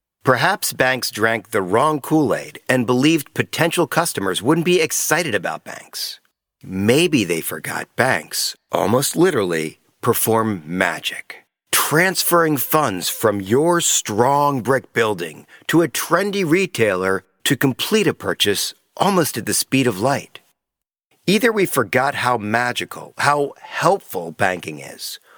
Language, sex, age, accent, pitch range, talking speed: English, male, 50-69, American, 115-165 Hz, 125 wpm